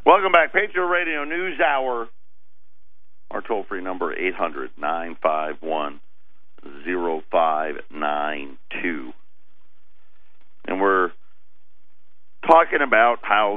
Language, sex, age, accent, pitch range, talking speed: English, male, 50-69, American, 95-145 Hz, 65 wpm